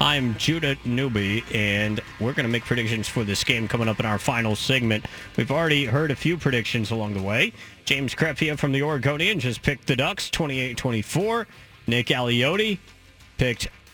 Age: 30-49